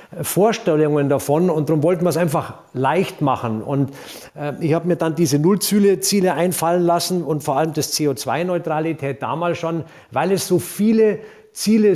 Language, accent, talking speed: German, German, 165 wpm